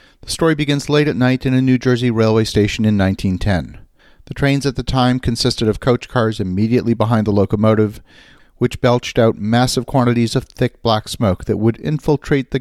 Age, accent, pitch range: 40-59, American, 100-130 Hz